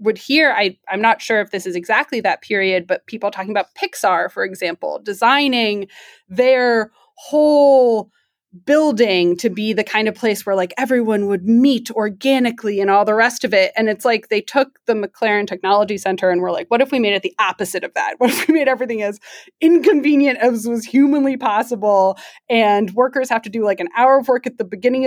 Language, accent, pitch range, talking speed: English, American, 200-255 Hz, 205 wpm